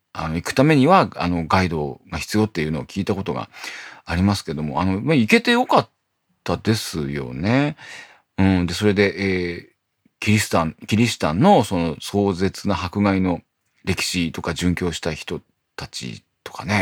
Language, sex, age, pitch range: Japanese, male, 40-59, 90-125 Hz